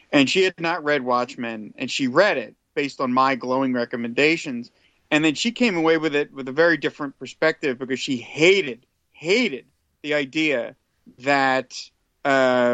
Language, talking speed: English, 165 wpm